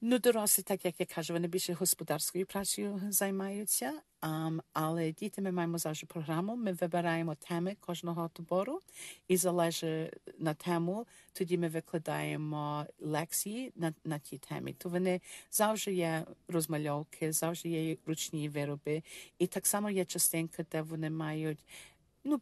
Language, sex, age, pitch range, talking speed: Ukrainian, female, 50-69, 155-185 Hz, 140 wpm